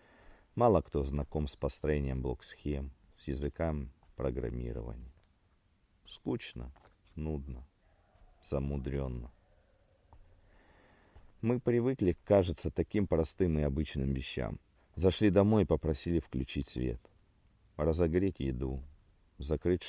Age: 40-59